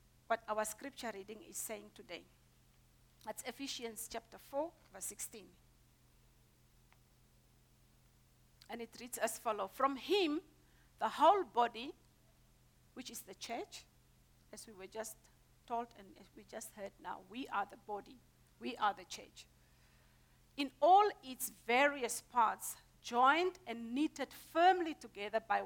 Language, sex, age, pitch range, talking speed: English, female, 50-69, 225-285 Hz, 130 wpm